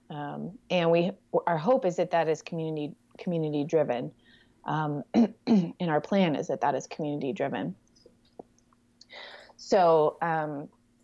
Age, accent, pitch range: 20-39, American, 150-175 Hz